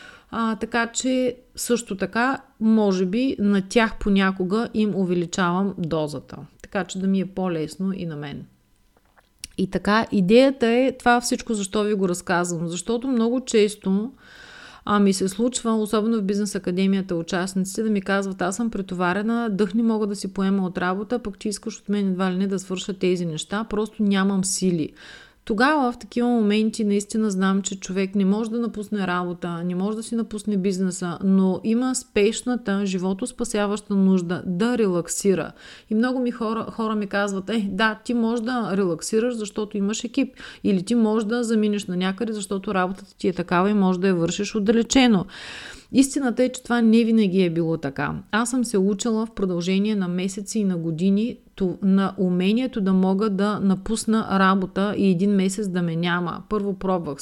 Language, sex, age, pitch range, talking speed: Bulgarian, female, 40-59, 190-225 Hz, 175 wpm